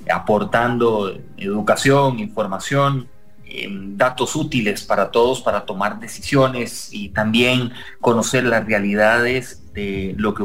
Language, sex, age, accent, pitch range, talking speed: English, male, 30-49, Mexican, 105-155 Hz, 110 wpm